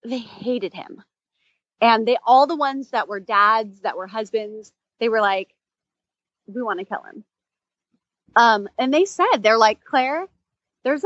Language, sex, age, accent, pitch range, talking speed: English, female, 30-49, American, 195-250 Hz, 165 wpm